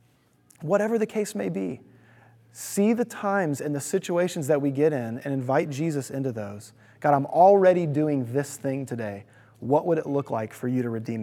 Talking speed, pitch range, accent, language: 190 wpm, 135-175 Hz, American, English